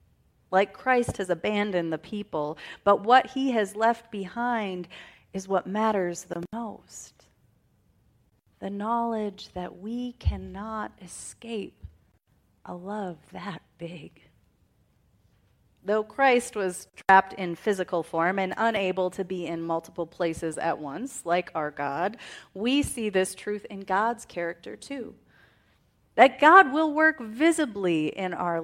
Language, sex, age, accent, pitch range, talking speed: English, female, 30-49, American, 175-230 Hz, 130 wpm